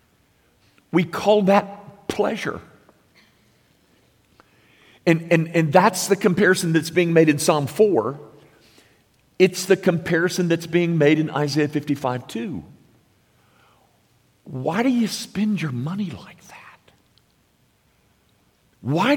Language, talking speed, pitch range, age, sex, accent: English, 110 wpm, 115-165 Hz, 50-69, male, American